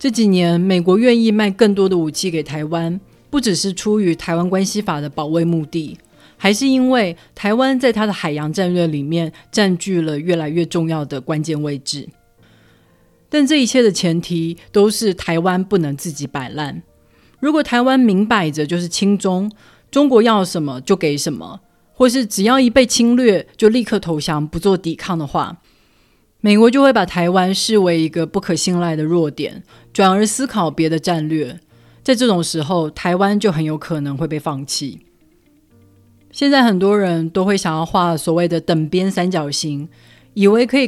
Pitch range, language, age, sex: 155-210 Hz, Chinese, 30-49, female